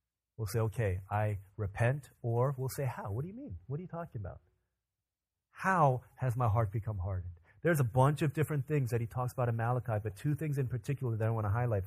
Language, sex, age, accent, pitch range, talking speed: English, male, 30-49, American, 115-180 Hz, 235 wpm